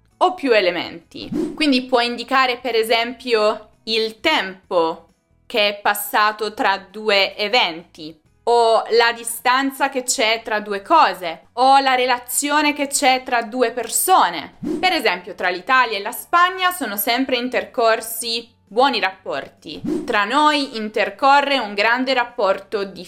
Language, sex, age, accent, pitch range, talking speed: Italian, female, 20-39, native, 205-285 Hz, 130 wpm